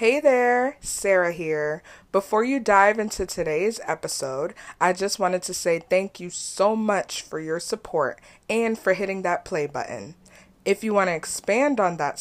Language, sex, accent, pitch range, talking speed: English, female, American, 170-225 Hz, 165 wpm